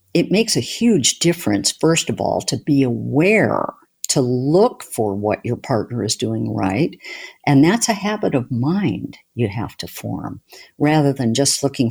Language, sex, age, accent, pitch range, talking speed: English, female, 50-69, American, 125-185 Hz, 170 wpm